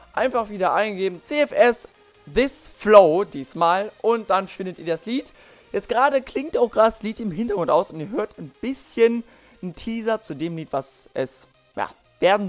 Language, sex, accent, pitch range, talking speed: German, male, German, 155-215 Hz, 180 wpm